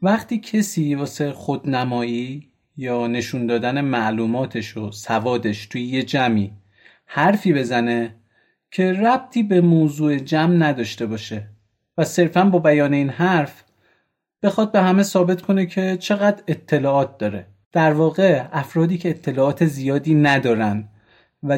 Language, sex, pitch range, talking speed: Persian, male, 125-185 Hz, 125 wpm